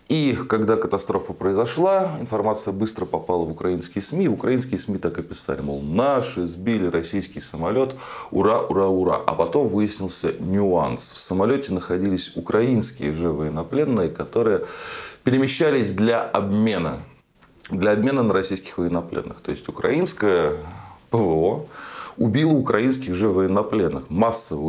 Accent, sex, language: native, male, Russian